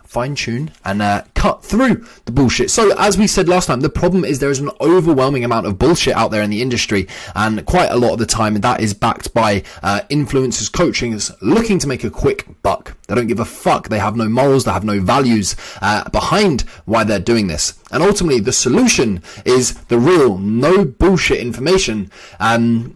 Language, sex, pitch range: English, male, 110-160 Hz